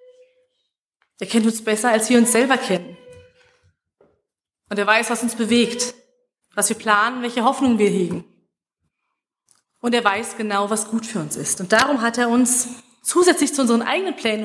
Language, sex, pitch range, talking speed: German, female, 210-255 Hz, 170 wpm